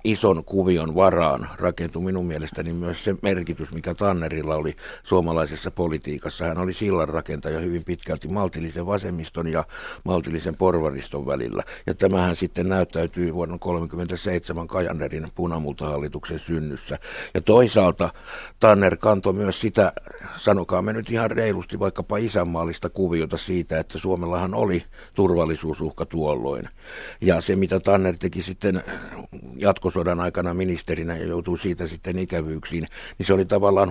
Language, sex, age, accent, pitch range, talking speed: Finnish, male, 60-79, native, 80-95 Hz, 130 wpm